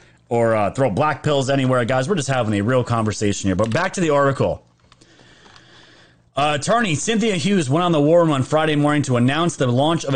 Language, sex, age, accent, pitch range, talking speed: English, male, 30-49, American, 130-175 Hz, 215 wpm